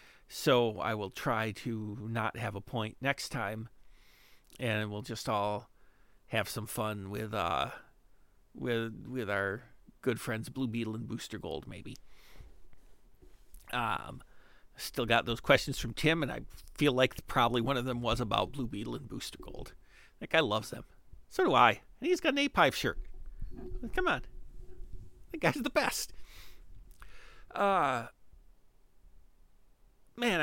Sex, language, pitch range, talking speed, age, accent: male, English, 105-130 Hz, 150 wpm, 50-69, American